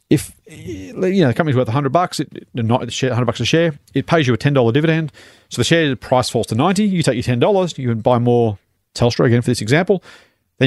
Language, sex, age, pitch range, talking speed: English, male, 40-59, 110-135 Hz, 240 wpm